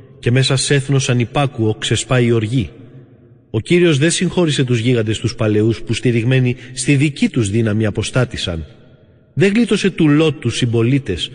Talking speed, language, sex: 155 wpm, Greek, male